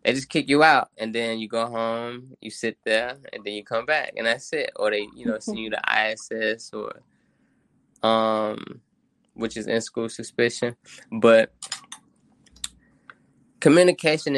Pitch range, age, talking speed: 110-120 Hz, 10-29, 160 wpm